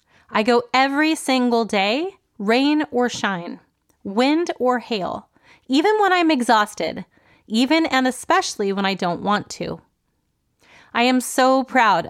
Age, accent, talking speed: 30-49, American, 135 wpm